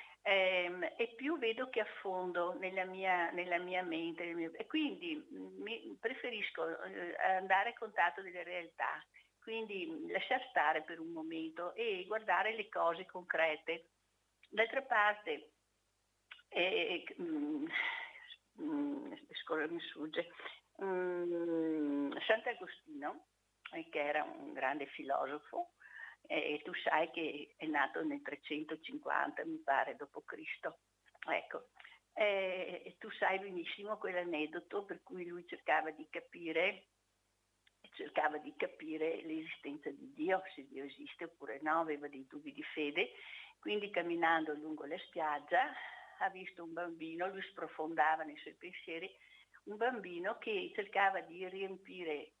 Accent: native